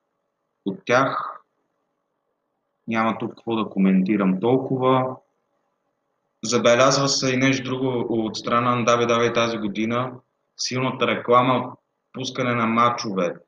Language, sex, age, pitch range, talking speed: Bulgarian, male, 30-49, 115-135 Hz, 105 wpm